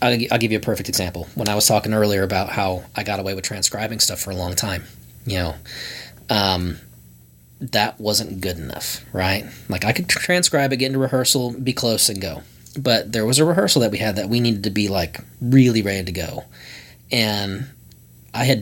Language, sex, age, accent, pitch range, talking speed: English, male, 30-49, American, 75-120 Hz, 205 wpm